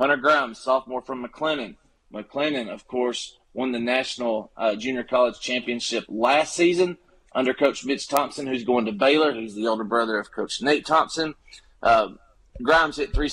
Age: 30-49